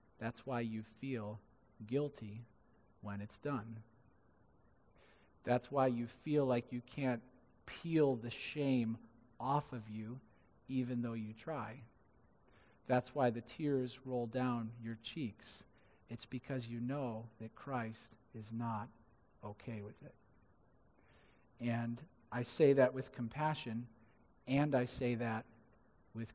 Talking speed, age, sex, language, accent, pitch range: 125 wpm, 40-59, male, English, American, 115-135 Hz